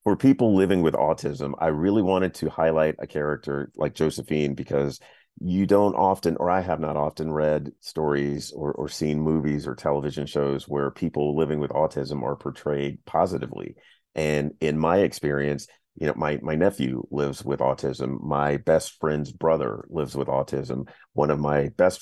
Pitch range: 70-80 Hz